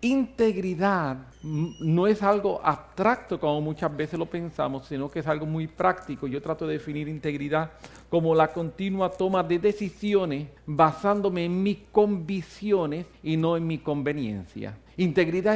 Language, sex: English, male